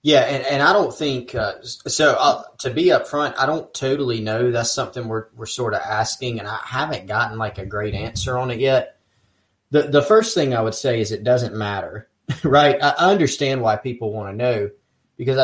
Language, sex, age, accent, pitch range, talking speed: English, male, 30-49, American, 110-140 Hz, 210 wpm